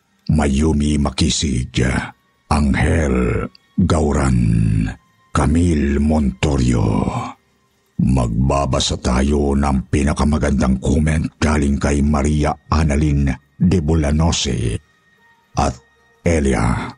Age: 60-79